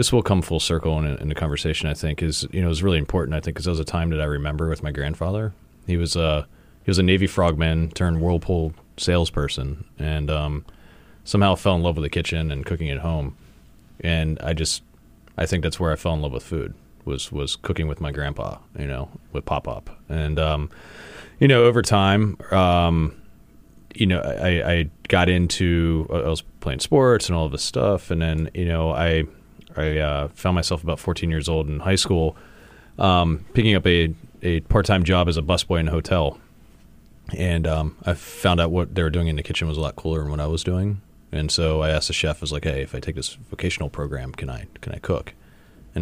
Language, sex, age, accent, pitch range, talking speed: English, male, 30-49, American, 75-90 Hz, 225 wpm